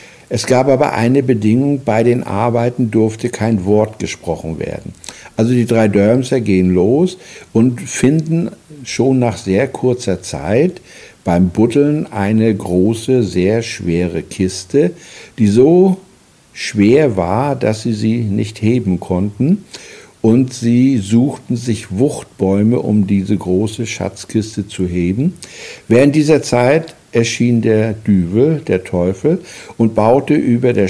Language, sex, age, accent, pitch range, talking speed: German, male, 60-79, German, 100-125 Hz, 130 wpm